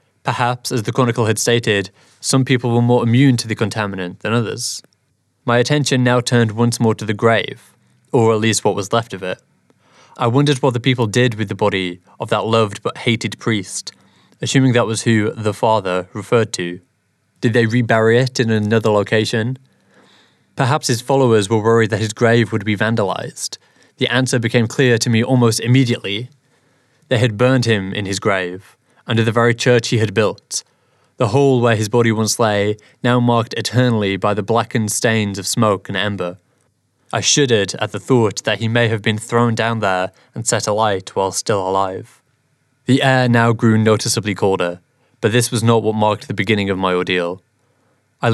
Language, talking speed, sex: English, 185 wpm, male